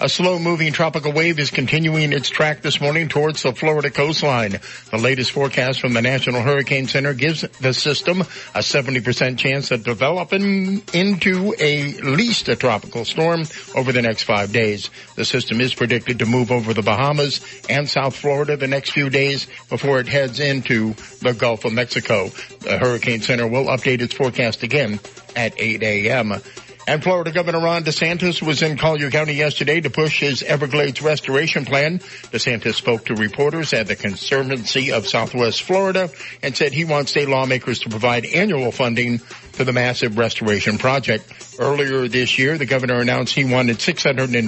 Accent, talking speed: American, 170 wpm